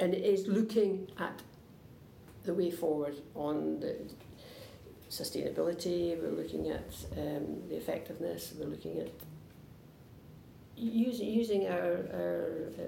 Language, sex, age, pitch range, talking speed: English, female, 60-79, 155-190 Hz, 110 wpm